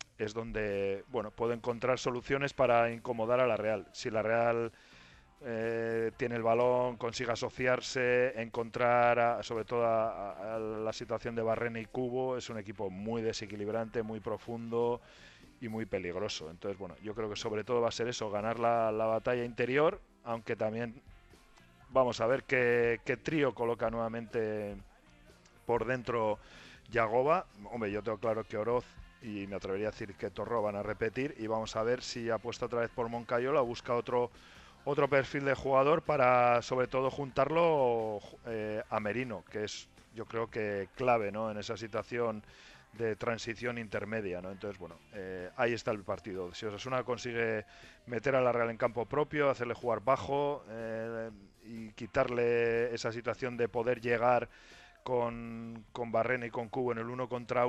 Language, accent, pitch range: Spanish, Spanish, 110-125 Hz